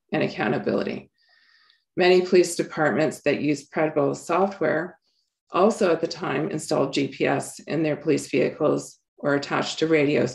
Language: English